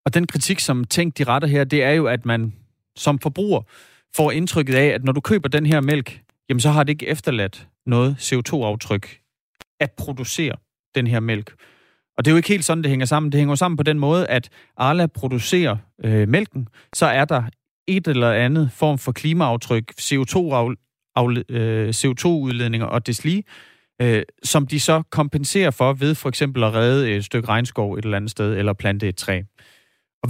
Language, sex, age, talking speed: Danish, male, 30-49, 190 wpm